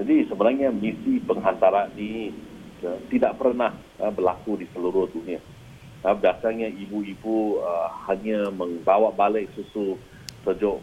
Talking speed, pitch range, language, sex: 120 wpm, 90-130 Hz, Malay, male